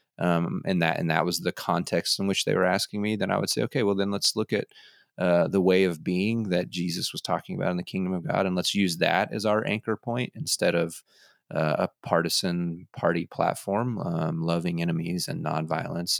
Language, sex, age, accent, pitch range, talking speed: English, male, 30-49, American, 85-110 Hz, 220 wpm